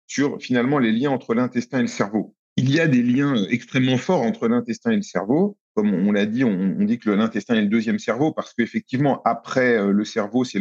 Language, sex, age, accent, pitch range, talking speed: French, male, 40-59, French, 120-200 Hz, 220 wpm